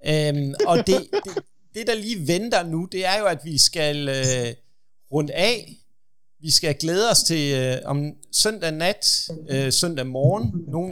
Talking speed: 170 wpm